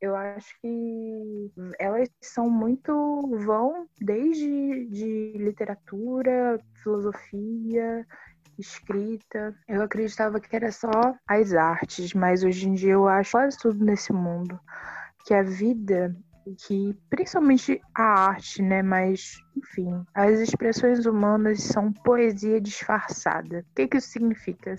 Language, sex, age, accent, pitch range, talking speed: Portuguese, female, 20-39, Brazilian, 185-215 Hz, 125 wpm